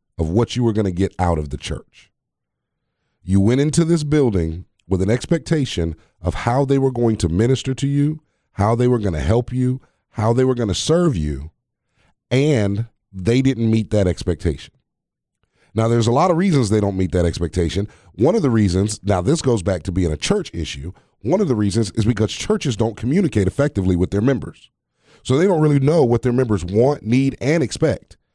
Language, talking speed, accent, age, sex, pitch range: English, 205 wpm, American, 30-49, male, 90-120 Hz